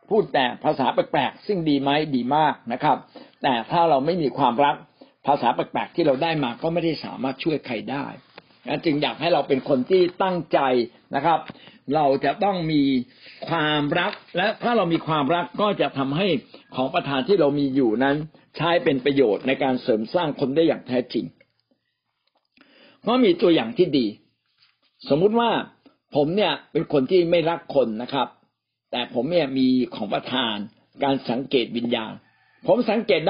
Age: 60-79